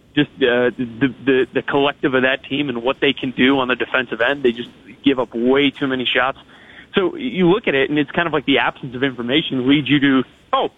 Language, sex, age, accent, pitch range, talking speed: English, male, 20-39, American, 125-150 Hz, 245 wpm